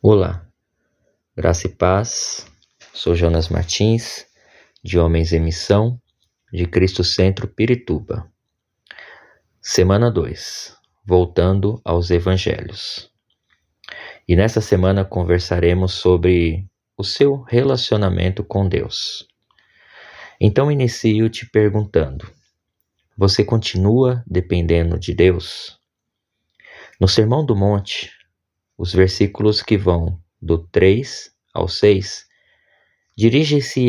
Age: 20-39